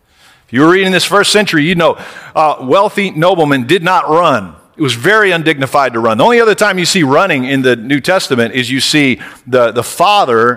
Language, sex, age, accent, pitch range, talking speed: English, male, 50-69, American, 130-185 Hz, 215 wpm